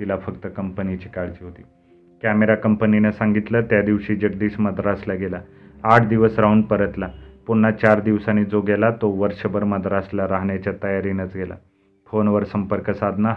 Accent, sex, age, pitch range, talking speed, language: native, male, 30-49, 100-110 Hz, 140 wpm, Marathi